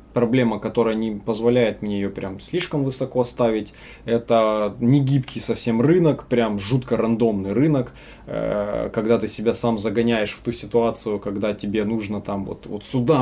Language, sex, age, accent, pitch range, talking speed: Russian, male, 20-39, native, 110-135 Hz, 155 wpm